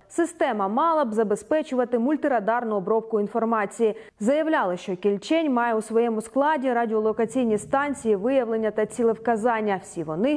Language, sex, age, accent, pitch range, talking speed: Ukrainian, female, 20-39, native, 200-255 Hz, 120 wpm